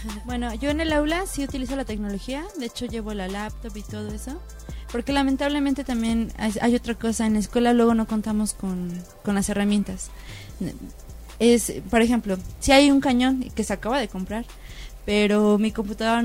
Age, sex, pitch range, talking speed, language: 20-39, female, 210-255 Hz, 175 wpm, Spanish